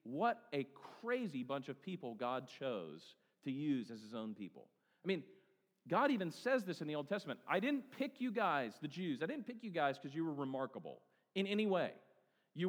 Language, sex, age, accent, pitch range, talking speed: English, male, 40-59, American, 145-220 Hz, 210 wpm